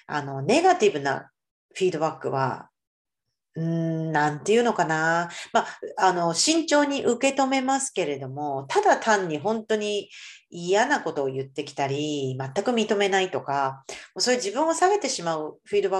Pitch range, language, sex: 150-220 Hz, Japanese, female